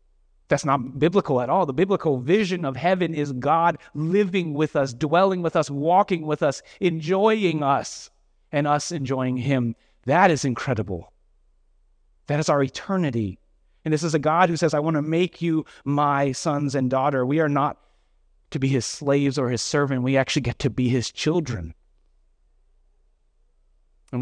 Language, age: English, 30-49